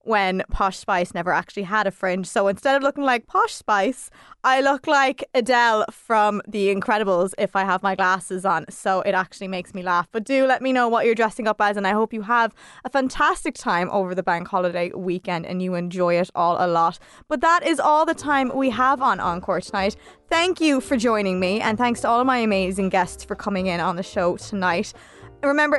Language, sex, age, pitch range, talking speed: English, female, 20-39, 200-280 Hz, 220 wpm